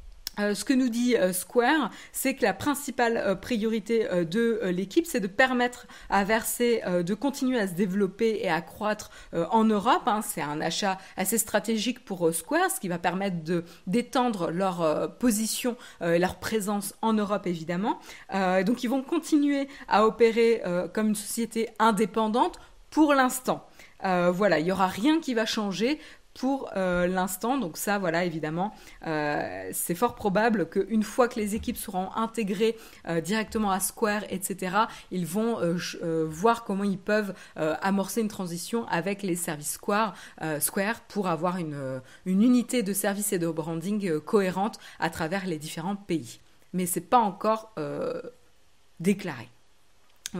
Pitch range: 175-230 Hz